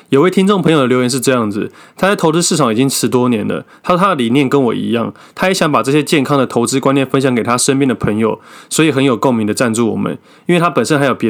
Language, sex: Chinese, male